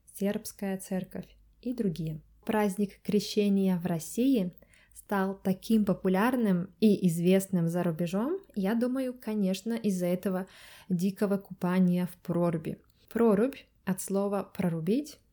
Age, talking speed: 20-39, 110 wpm